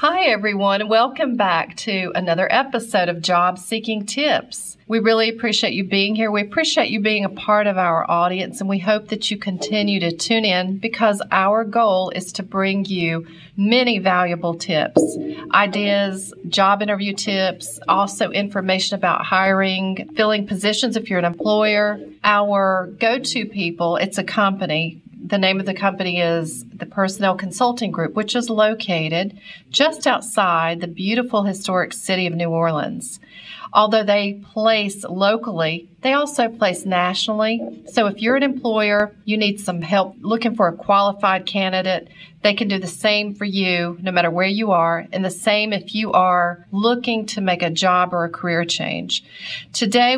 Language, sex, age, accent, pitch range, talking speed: English, female, 40-59, American, 180-215 Hz, 165 wpm